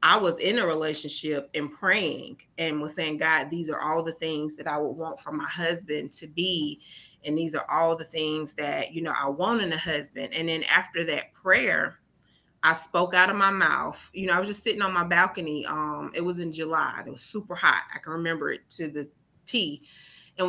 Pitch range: 160-195 Hz